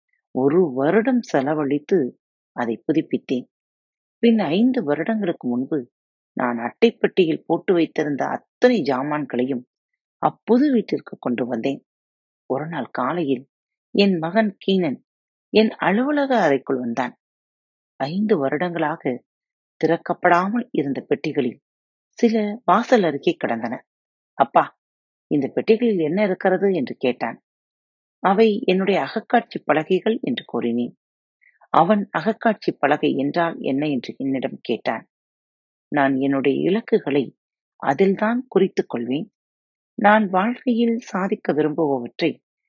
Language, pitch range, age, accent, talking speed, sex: Tamil, 135-215 Hz, 30-49, native, 95 wpm, female